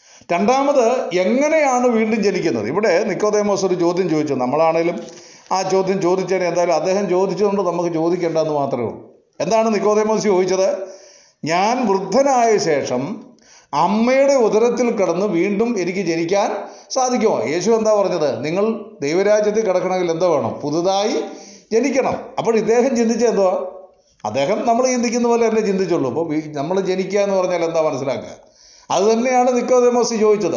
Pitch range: 170-215 Hz